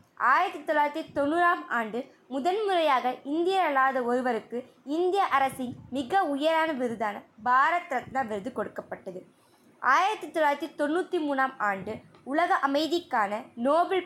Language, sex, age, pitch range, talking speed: Tamil, female, 20-39, 235-320 Hz, 105 wpm